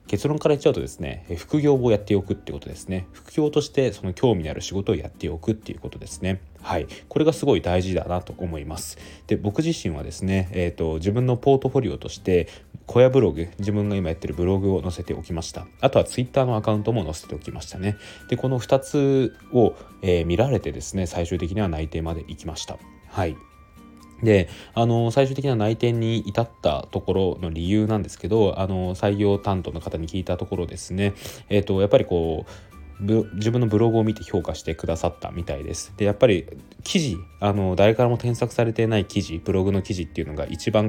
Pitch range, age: 85-110 Hz, 20-39